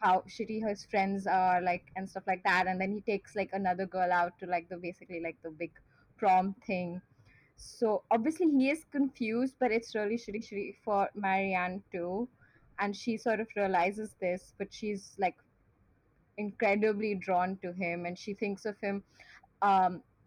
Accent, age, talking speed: Indian, 20-39, 175 wpm